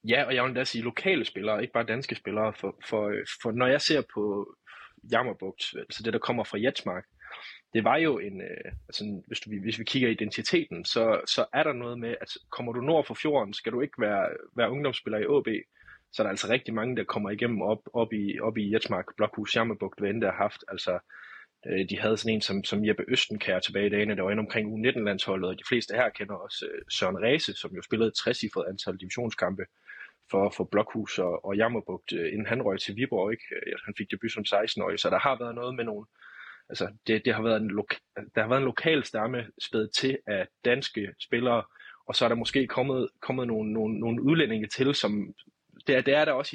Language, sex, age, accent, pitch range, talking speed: Danish, male, 20-39, native, 105-120 Hz, 225 wpm